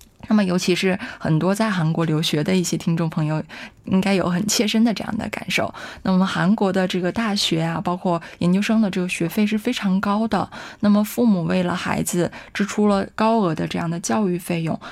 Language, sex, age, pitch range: Korean, female, 20-39, 170-210 Hz